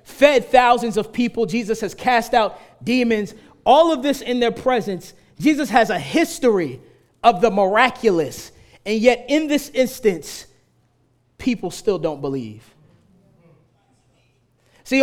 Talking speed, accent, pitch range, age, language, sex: 130 wpm, American, 175-255 Hz, 30-49, English, male